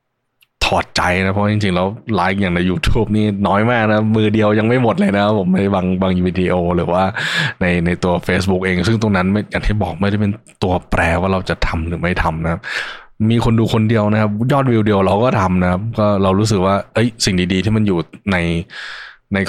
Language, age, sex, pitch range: Thai, 20-39, male, 90-105 Hz